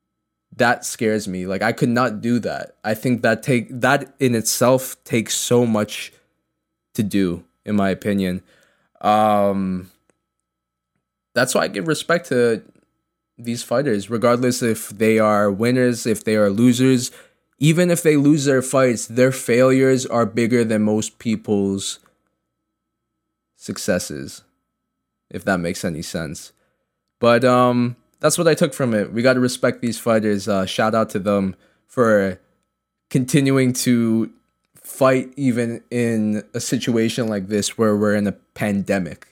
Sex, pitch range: male, 105-125 Hz